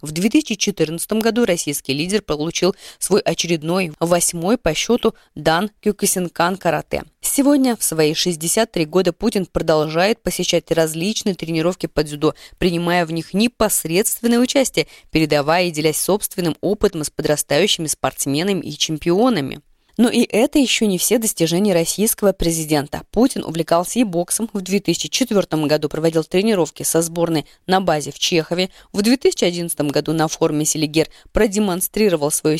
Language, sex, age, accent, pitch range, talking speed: Russian, female, 20-39, native, 160-215 Hz, 135 wpm